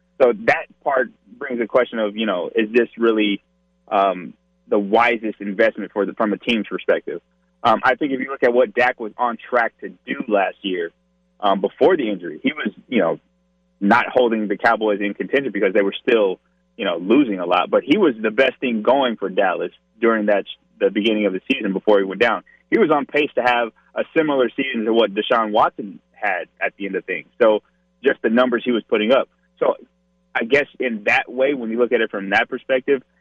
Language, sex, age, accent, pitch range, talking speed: English, male, 20-39, American, 100-125 Hz, 225 wpm